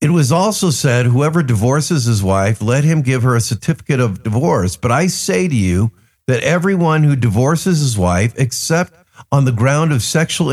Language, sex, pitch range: English, male, 125-175 Hz